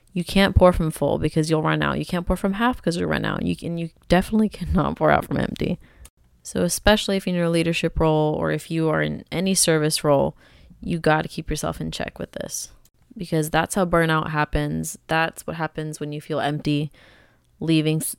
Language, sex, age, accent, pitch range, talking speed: English, female, 20-39, American, 150-175 Hz, 220 wpm